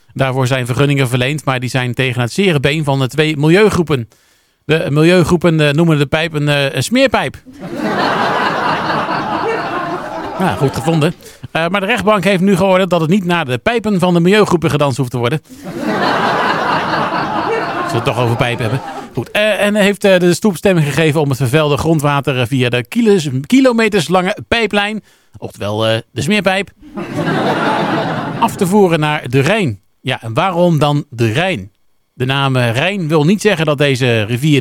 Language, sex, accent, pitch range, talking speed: Dutch, male, Dutch, 135-185 Hz, 155 wpm